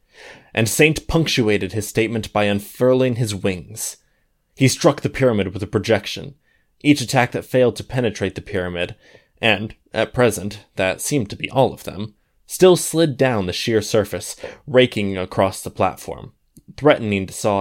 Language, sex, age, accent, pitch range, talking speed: English, male, 20-39, American, 100-135 Hz, 160 wpm